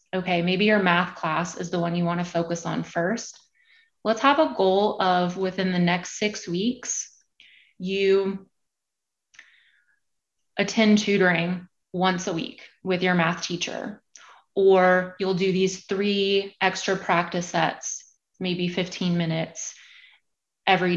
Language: English